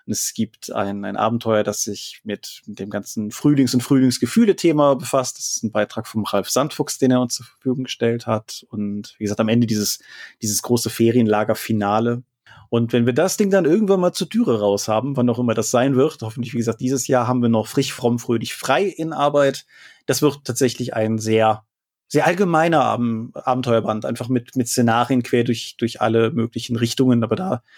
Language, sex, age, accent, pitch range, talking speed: German, male, 30-49, German, 110-140 Hz, 195 wpm